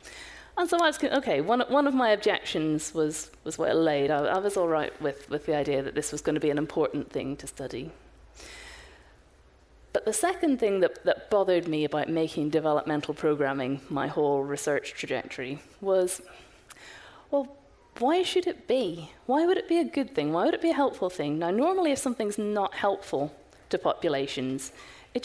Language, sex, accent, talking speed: English, female, British, 190 wpm